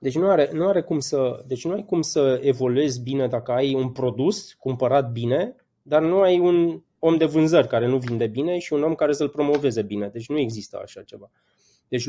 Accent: native